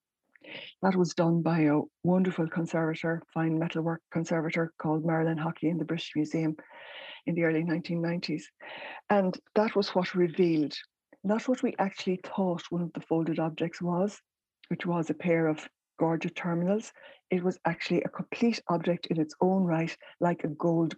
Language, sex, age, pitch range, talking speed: English, female, 60-79, 155-180 Hz, 165 wpm